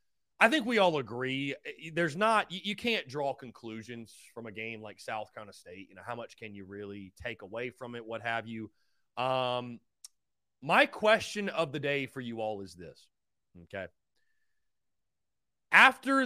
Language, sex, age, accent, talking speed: English, male, 30-49, American, 170 wpm